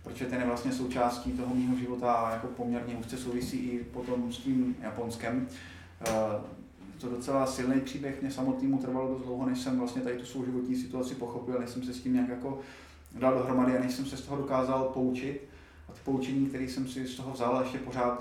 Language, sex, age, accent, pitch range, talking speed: Czech, male, 20-39, native, 120-130 Hz, 210 wpm